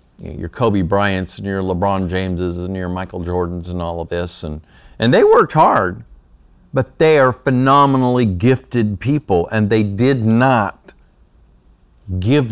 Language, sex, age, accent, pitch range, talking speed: English, male, 50-69, American, 80-115 Hz, 150 wpm